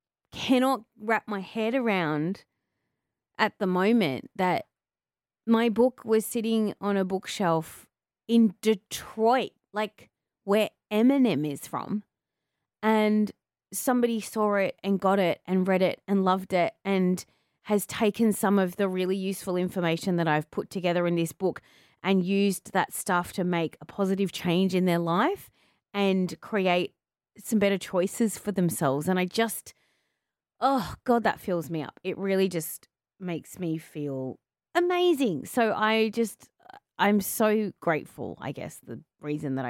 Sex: female